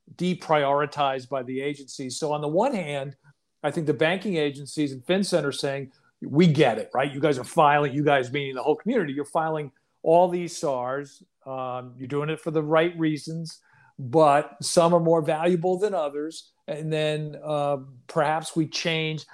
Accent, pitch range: American, 140-170 Hz